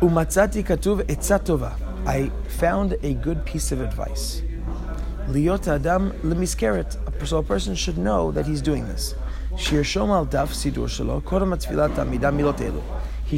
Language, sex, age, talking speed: English, male, 20-39, 75 wpm